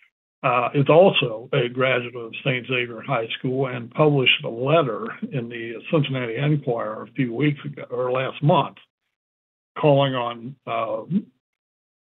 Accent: American